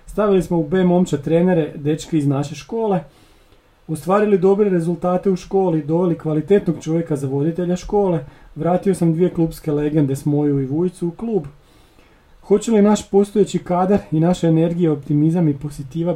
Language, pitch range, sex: Croatian, 145-175 Hz, male